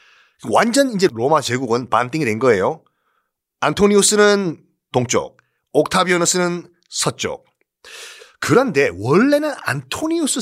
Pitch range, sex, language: 150-230 Hz, male, Korean